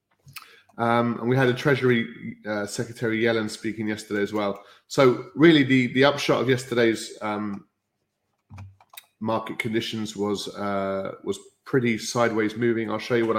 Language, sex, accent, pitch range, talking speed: English, male, British, 105-120 Hz, 150 wpm